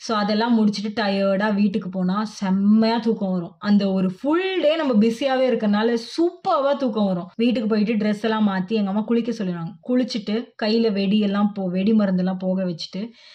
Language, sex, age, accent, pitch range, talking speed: Tamil, female, 20-39, native, 195-245 Hz, 160 wpm